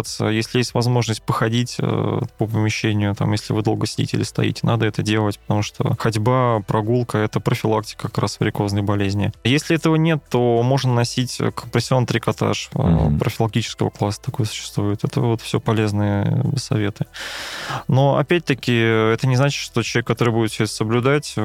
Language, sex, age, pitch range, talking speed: Russian, male, 20-39, 110-135 Hz, 155 wpm